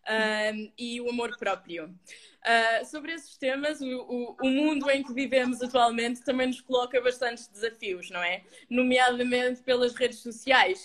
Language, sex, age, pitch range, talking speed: Portuguese, female, 20-39, 230-285 Hz, 155 wpm